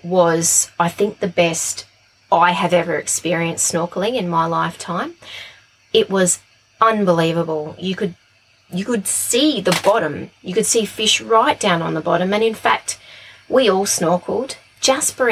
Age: 20-39